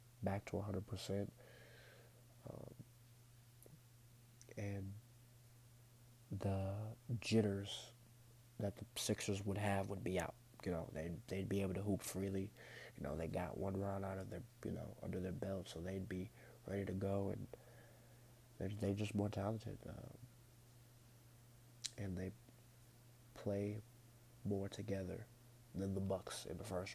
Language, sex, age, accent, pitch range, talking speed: English, male, 30-49, American, 100-120 Hz, 140 wpm